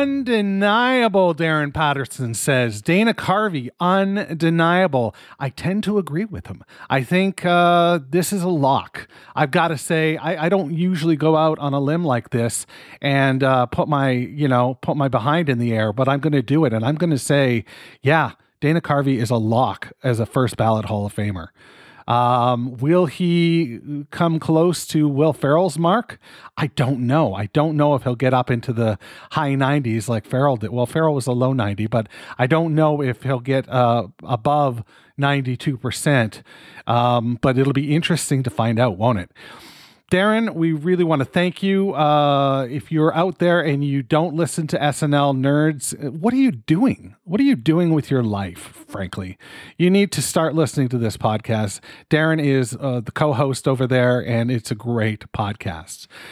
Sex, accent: male, American